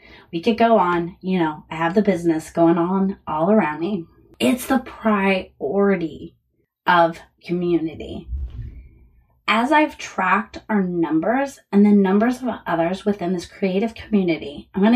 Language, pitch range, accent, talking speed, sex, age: English, 170-230 Hz, American, 145 wpm, female, 20-39